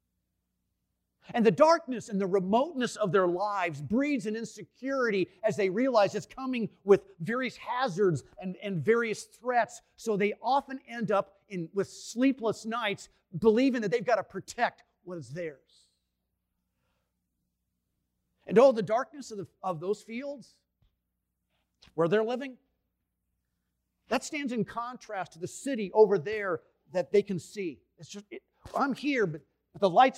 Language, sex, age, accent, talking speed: English, male, 50-69, American, 150 wpm